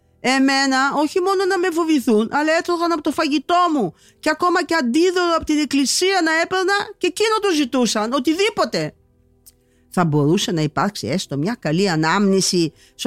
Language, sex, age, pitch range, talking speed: English, female, 50-69, 160-260 Hz, 160 wpm